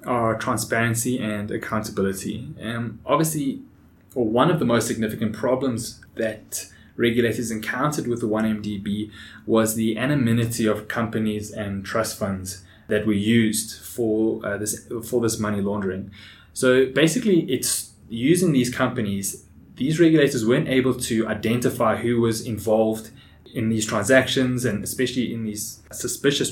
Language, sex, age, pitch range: English, male, 20-39, 105-125 Hz